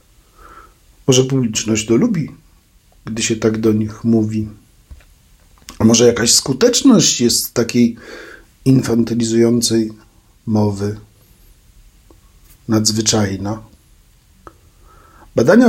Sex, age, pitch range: male, 40-59, 105-130 Hz